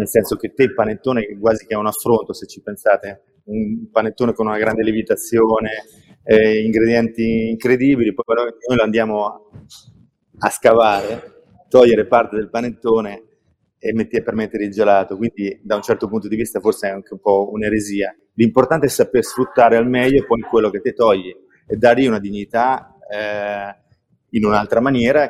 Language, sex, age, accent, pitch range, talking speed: Italian, male, 30-49, native, 105-120 Hz, 170 wpm